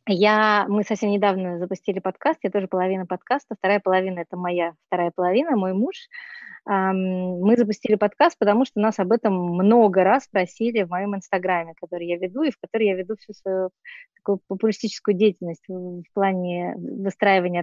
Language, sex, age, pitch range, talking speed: Russian, female, 20-39, 190-225 Hz, 165 wpm